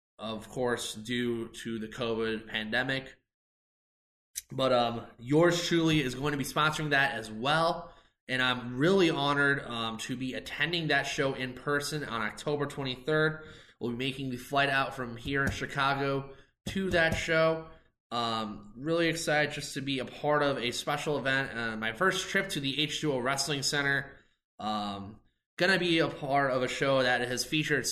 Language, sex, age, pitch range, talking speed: English, male, 20-39, 120-145 Hz, 170 wpm